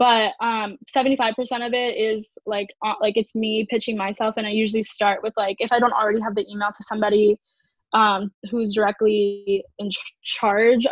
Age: 10-29